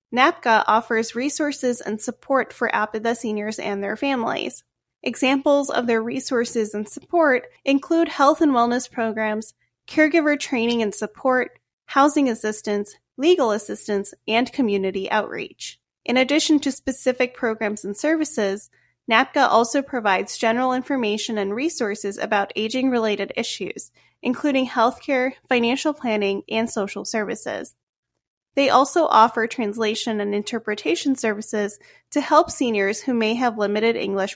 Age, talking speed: 30-49, 125 wpm